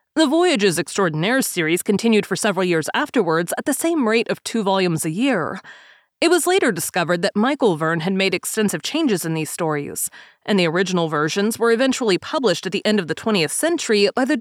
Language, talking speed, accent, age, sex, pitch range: English, 200 wpm, American, 30-49, female, 180-255 Hz